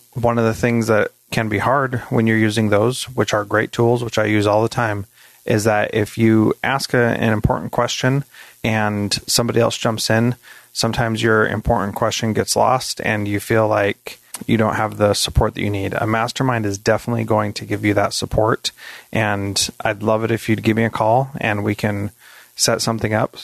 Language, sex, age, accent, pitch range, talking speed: English, male, 30-49, American, 105-115 Hz, 200 wpm